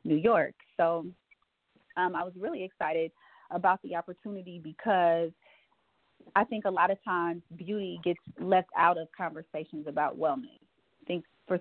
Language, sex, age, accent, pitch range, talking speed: English, female, 30-49, American, 165-185 Hz, 150 wpm